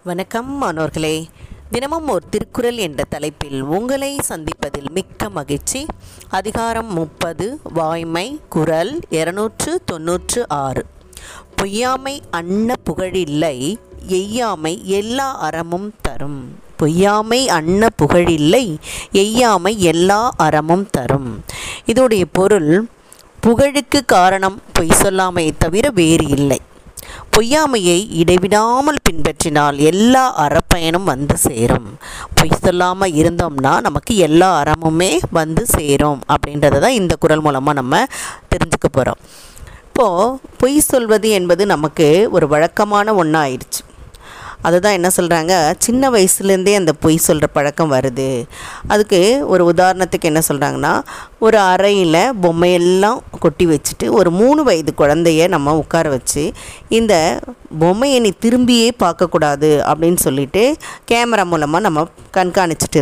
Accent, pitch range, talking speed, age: native, 155-205 Hz, 100 wpm, 20-39